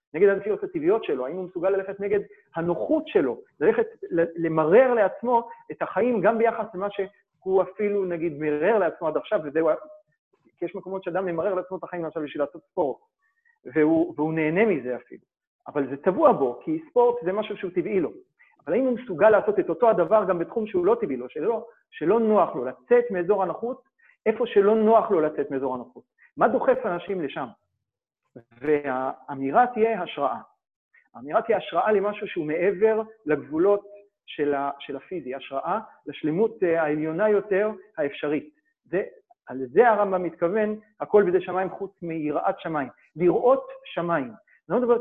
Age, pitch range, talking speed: 40-59, 170-245 Hz, 160 wpm